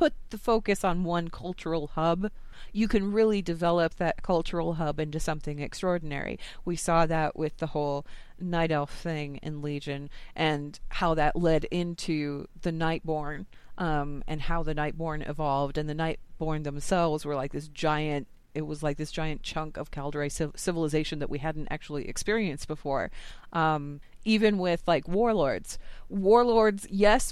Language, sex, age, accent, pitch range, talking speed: English, female, 30-49, American, 155-185 Hz, 155 wpm